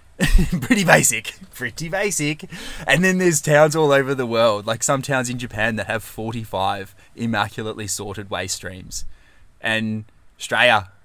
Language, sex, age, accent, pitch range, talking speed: English, male, 20-39, Australian, 95-135 Hz, 140 wpm